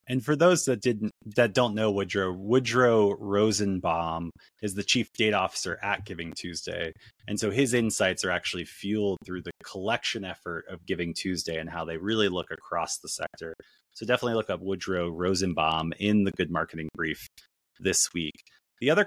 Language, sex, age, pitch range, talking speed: English, male, 30-49, 85-115 Hz, 175 wpm